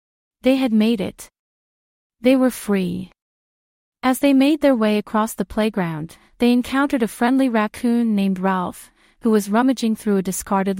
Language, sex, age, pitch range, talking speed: English, female, 30-49, 200-250 Hz, 155 wpm